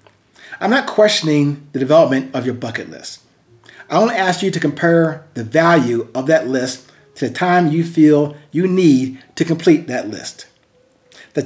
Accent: American